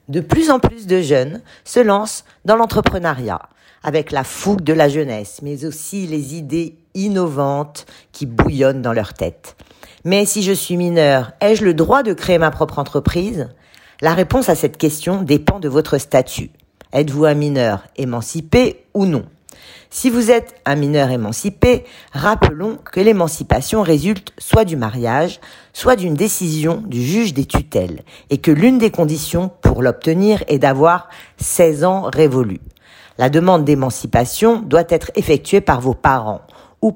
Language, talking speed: French, 155 wpm